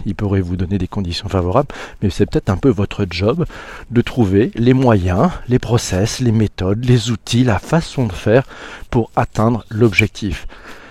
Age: 40-59